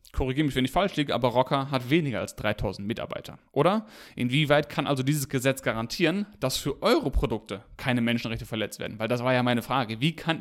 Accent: German